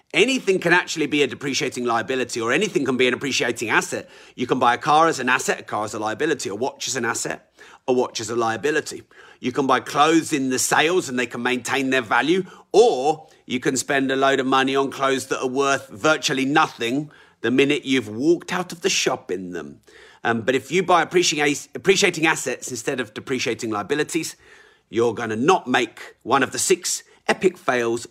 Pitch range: 130-180 Hz